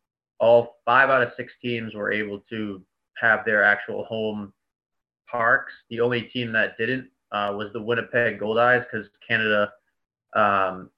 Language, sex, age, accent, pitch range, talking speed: English, male, 30-49, American, 105-120 Hz, 150 wpm